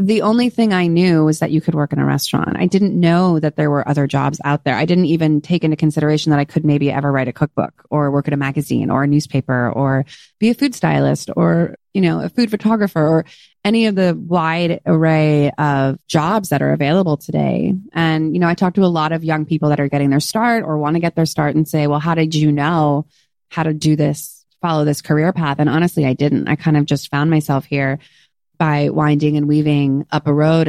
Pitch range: 145-165 Hz